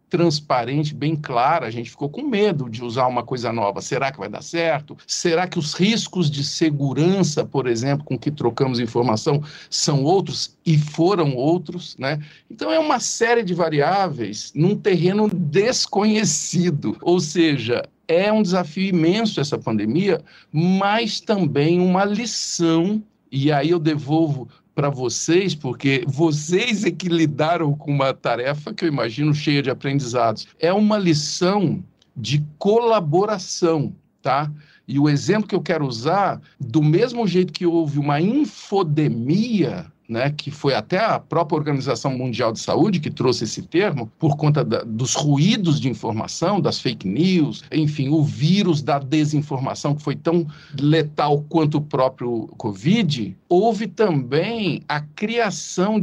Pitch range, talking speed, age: 145-185 Hz, 145 wpm, 50-69